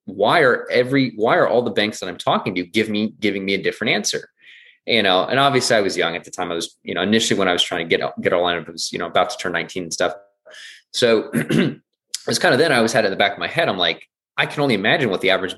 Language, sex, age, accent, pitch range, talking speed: English, male, 20-39, American, 85-115 Hz, 305 wpm